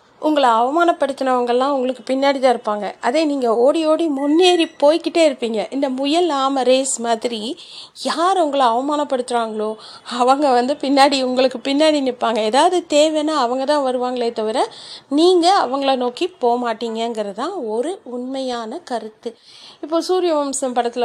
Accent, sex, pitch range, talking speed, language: native, female, 240-310 Hz, 125 wpm, Tamil